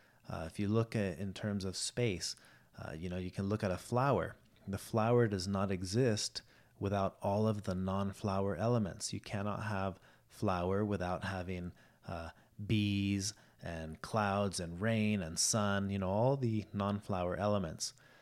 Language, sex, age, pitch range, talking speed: English, male, 30-49, 95-120 Hz, 160 wpm